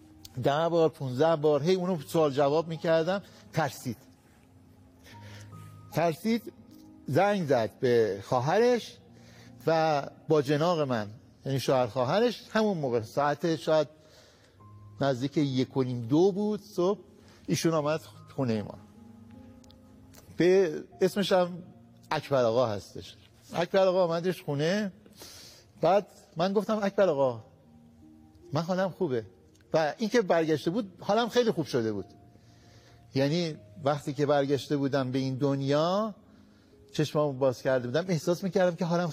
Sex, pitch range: male, 120-185 Hz